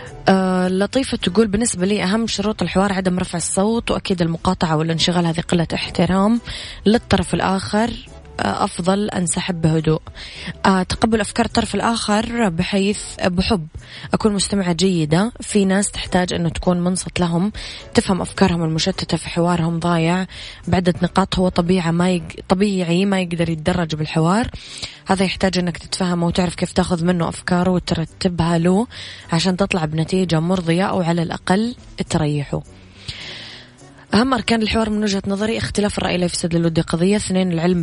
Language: Arabic